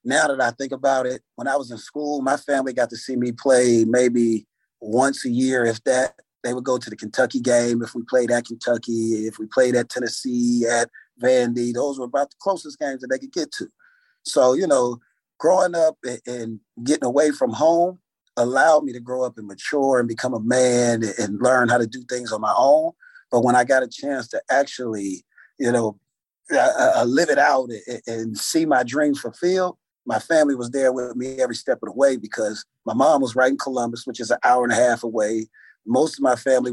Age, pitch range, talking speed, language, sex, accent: 30-49, 120-140 Hz, 215 wpm, English, male, American